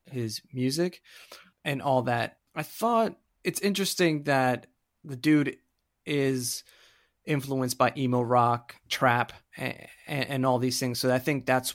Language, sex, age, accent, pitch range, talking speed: English, male, 30-49, American, 120-145 Hz, 140 wpm